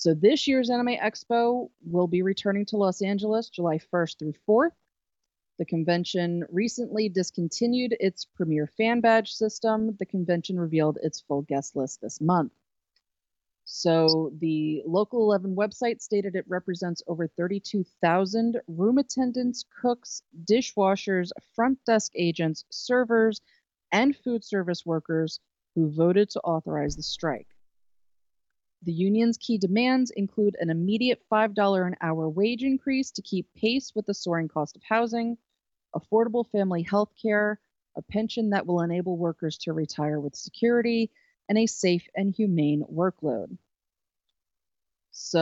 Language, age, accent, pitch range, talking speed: English, 30-49, American, 160-220 Hz, 135 wpm